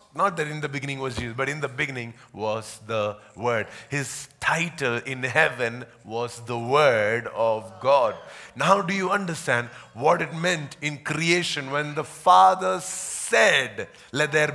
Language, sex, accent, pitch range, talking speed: English, male, Indian, 140-175 Hz, 155 wpm